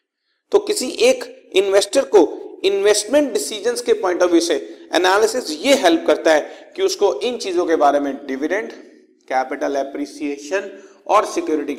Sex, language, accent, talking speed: male, Hindi, native, 145 wpm